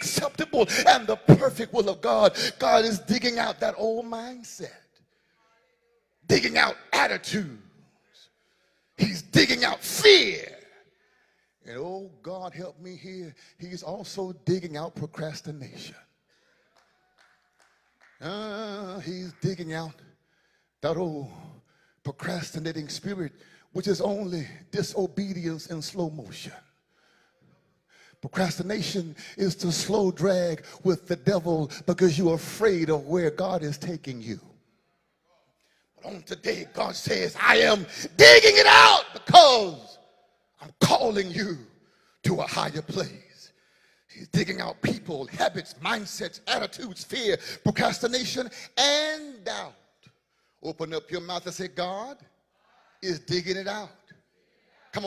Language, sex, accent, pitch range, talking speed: English, male, American, 165-215 Hz, 115 wpm